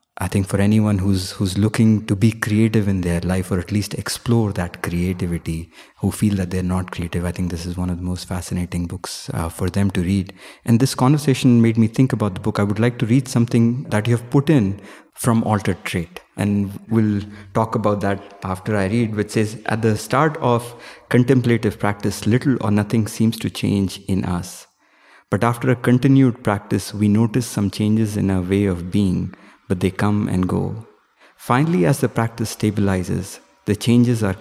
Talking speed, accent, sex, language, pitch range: 200 wpm, Indian, male, English, 95-115 Hz